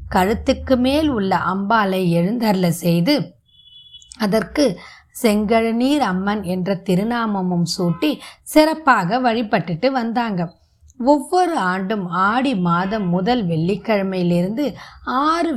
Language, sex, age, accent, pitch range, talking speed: Tamil, female, 20-39, native, 180-245 Hz, 85 wpm